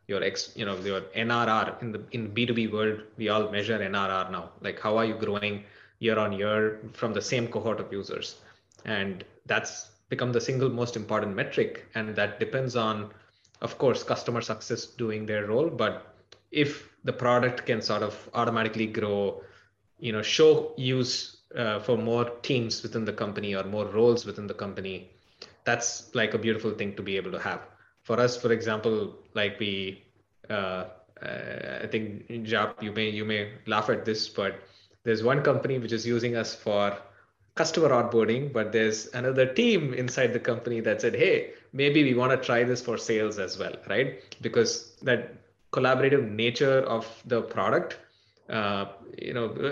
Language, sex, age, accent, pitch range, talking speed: English, male, 20-39, Indian, 105-125 Hz, 175 wpm